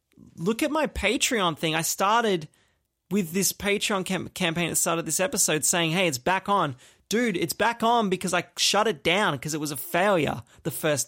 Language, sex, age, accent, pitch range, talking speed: English, male, 30-49, Australian, 140-185 Hz, 200 wpm